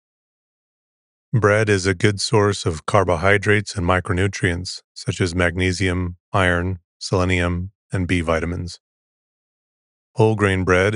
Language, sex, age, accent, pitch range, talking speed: English, male, 30-49, American, 90-105 Hz, 110 wpm